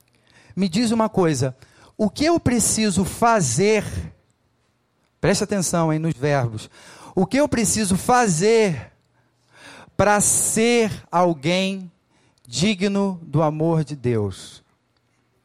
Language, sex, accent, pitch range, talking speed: Portuguese, male, Brazilian, 125-180 Hz, 105 wpm